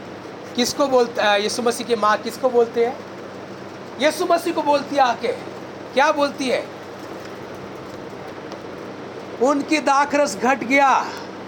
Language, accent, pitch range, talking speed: Hindi, native, 230-290 Hz, 115 wpm